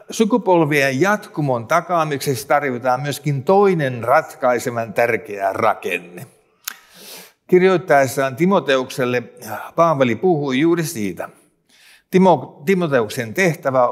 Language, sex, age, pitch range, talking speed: Finnish, male, 50-69, 130-170 Hz, 75 wpm